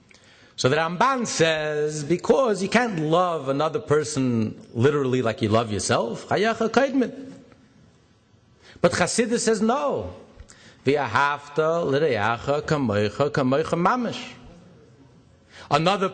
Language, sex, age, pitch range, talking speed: English, male, 50-69, 140-215 Hz, 75 wpm